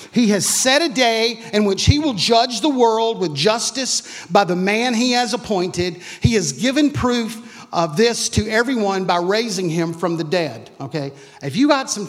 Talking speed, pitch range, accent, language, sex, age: 195 wpm, 185-235 Hz, American, English, male, 50-69